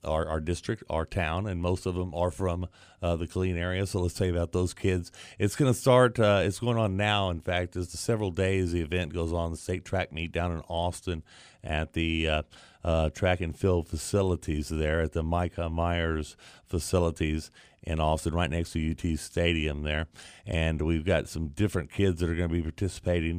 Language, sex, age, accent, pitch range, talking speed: English, male, 40-59, American, 85-95 Hz, 210 wpm